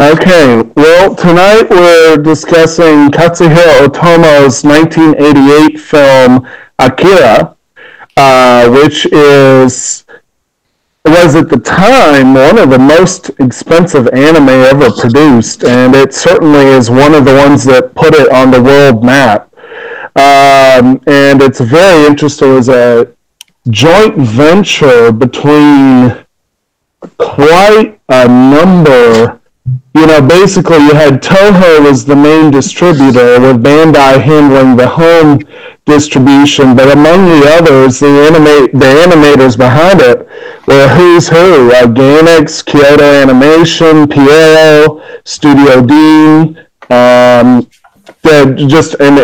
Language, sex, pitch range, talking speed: English, male, 130-155 Hz, 115 wpm